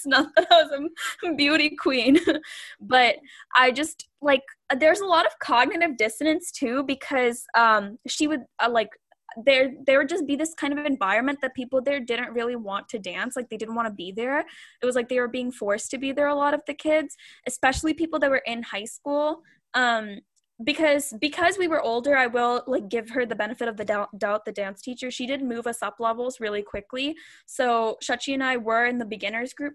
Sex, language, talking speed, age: female, English, 215 wpm, 10-29